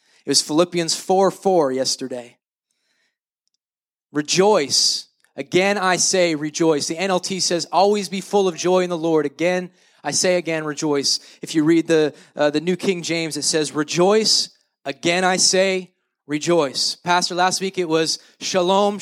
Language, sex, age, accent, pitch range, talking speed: English, male, 20-39, American, 185-275 Hz, 155 wpm